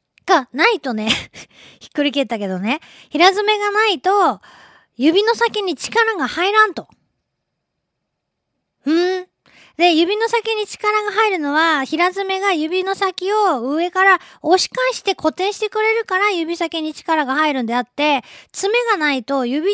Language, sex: Japanese, female